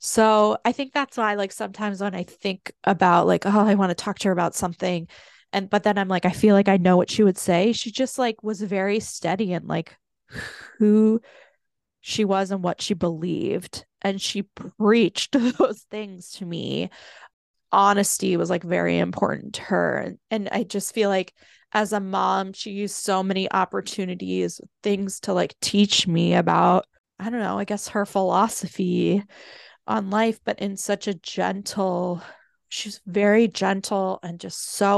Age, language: 20-39, English